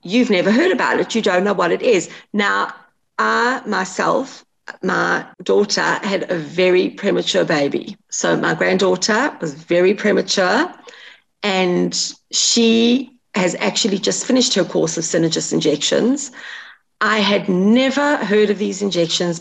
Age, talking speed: 40-59, 140 wpm